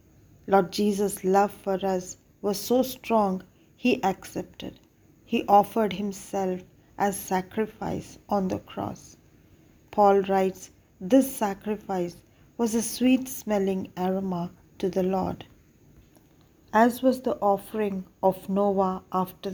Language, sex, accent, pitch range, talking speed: English, female, Indian, 185-215 Hz, 110 wpm